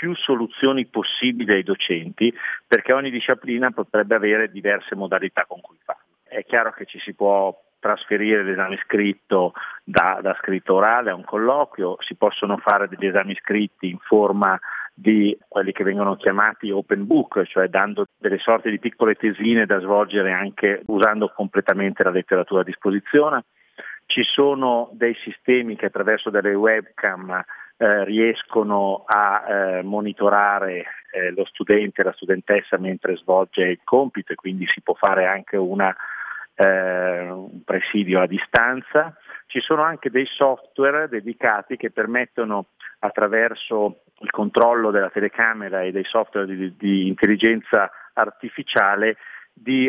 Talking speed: 140 wpm